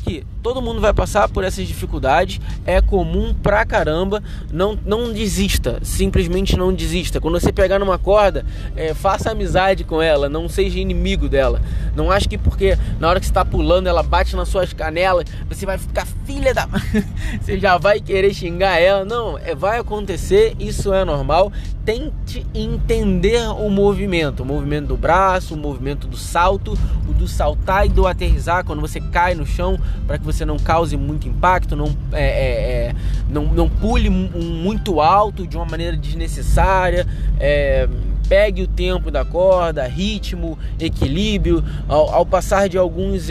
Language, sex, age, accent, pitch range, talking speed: Portuguese, male, 20-39, Brazilian, 135-195 Hz, 160 wpm